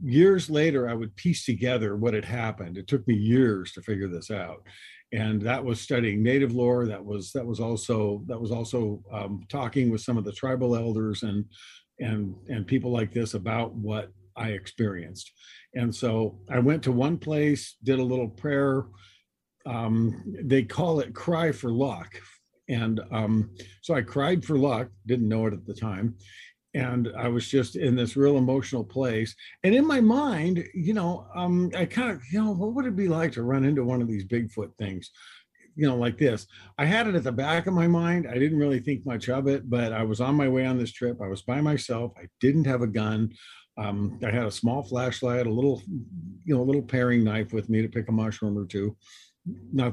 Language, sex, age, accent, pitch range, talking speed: English, male, 50-69, American, 110-140 Hz, 210 wpm